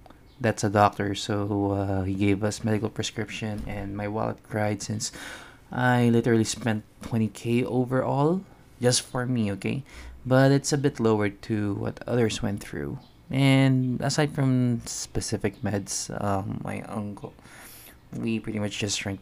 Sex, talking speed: male, 145 wpm